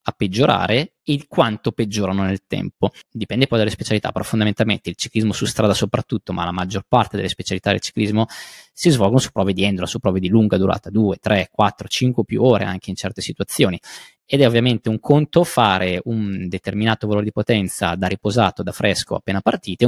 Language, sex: Italian, male